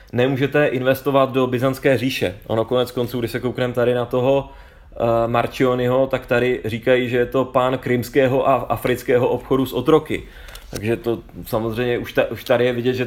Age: 30-49